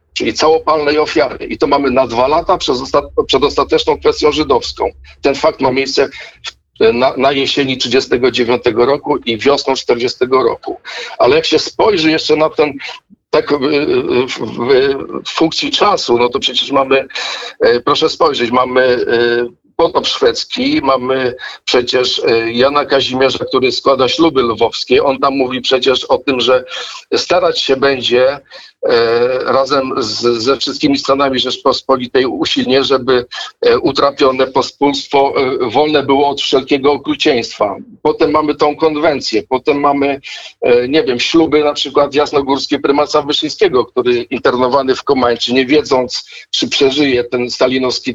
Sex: male